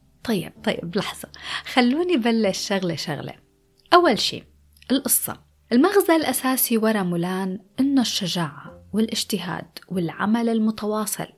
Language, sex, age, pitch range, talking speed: Arabic, female, 20-39, 190-270 Hz, 100 wpm